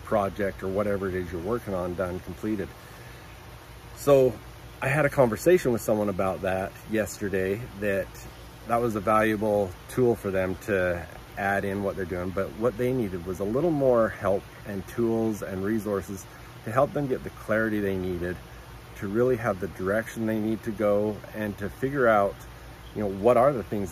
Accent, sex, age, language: American, male, 40-59, English